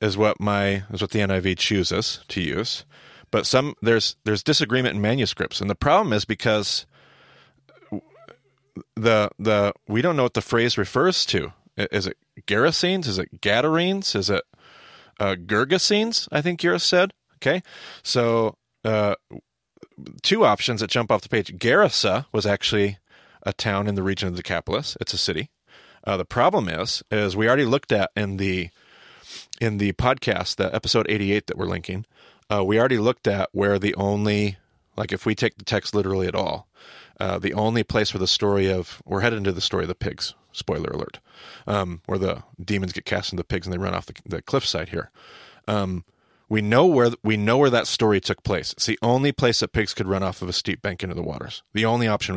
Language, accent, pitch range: English, American, 100-120 Hz